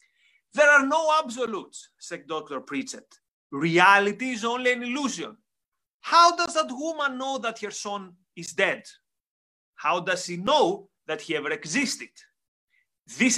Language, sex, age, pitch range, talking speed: English, male, 30-49, 180-255 Hz, 140 wpm